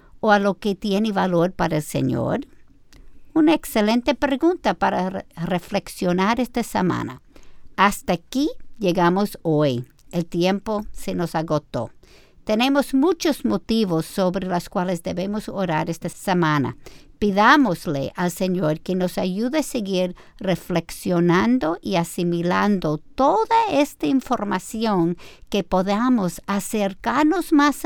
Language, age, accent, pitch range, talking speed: Spanish, 50-69, American, 170-245 Hz, 115 wpm